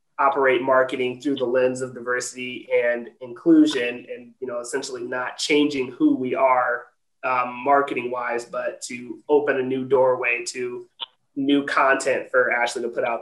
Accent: American